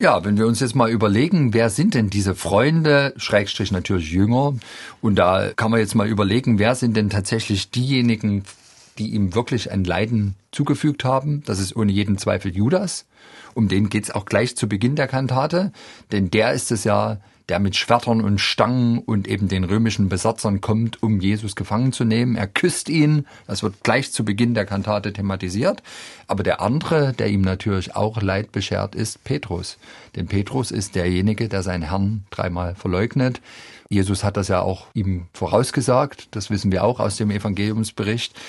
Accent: German